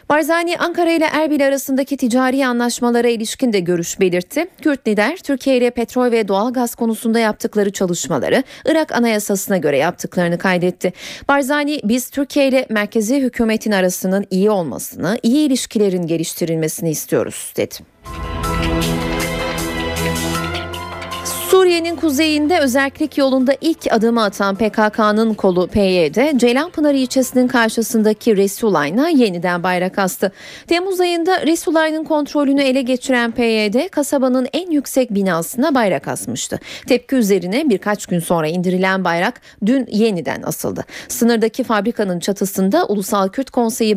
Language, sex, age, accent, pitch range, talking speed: Turkish, female, 30-49, native, 190-275 Hz, 115 wpm